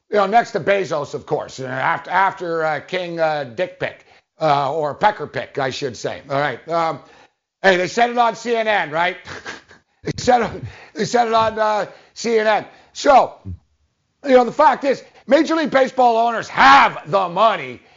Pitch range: 185-245 Hz